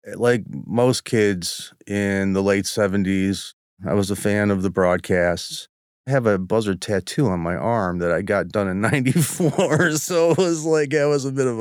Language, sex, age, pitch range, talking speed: English, male, 30-49, 90-110 Hz, 190 wpm